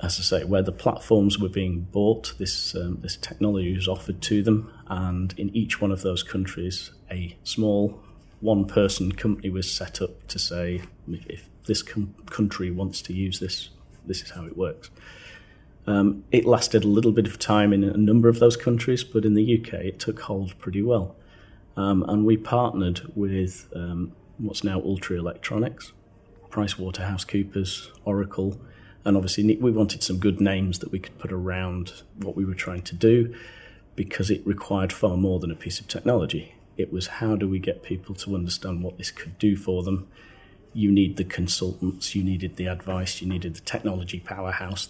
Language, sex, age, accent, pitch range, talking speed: English, male, 40-59, British, 95-105 Hz, 185 wpm